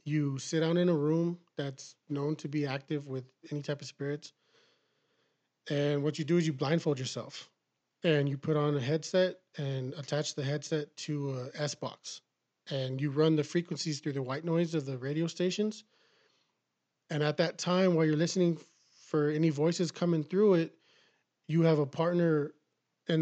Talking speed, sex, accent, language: 175 wpm, male, American, English